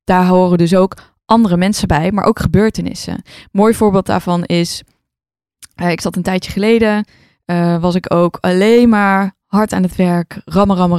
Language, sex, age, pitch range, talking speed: Dutch, female, 20-39, 160-190 Hz, 175 wpm